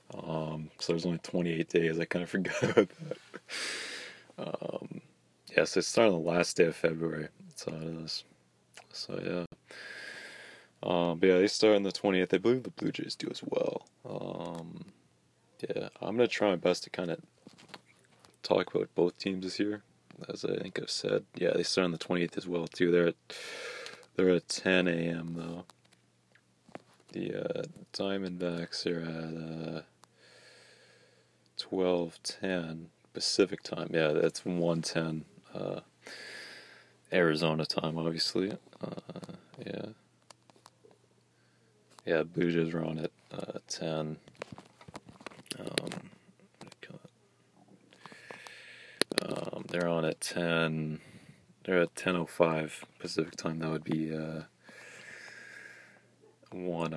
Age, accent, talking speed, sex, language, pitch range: 20-39, American, 135 wpm, male, English, 80-90 Hz